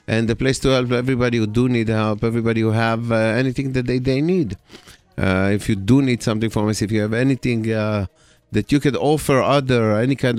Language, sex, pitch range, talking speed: English, male, 105-125 Hz, 225 wpm